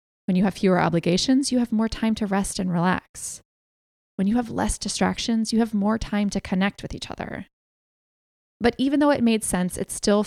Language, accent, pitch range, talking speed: English, American, 175-215 Hz, 205 wpm